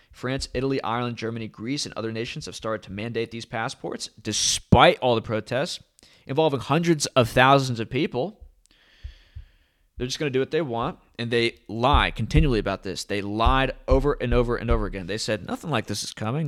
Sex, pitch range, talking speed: male, 110-145 Hz, 195 wpm